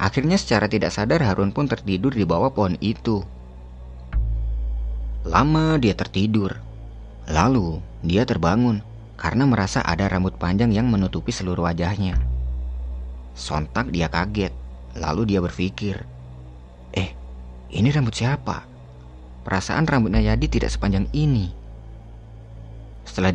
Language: Indonesian